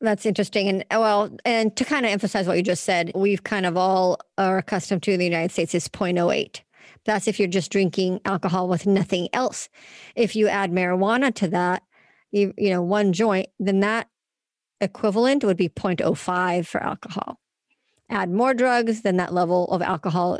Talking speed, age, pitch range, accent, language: 180 wpm, 50-69, 180-215 Hz, American, English